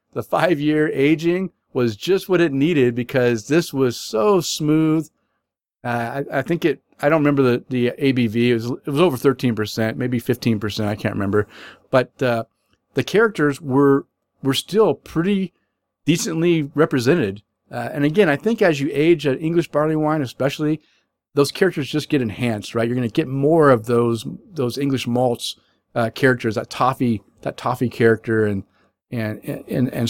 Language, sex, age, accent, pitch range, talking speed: English, male, 40-59, American, 115-150 Hz, 170 wpm